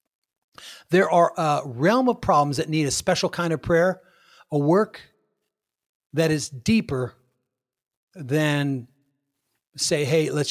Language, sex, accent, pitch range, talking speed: English, male, American, 130-165 Hz, 125 wpm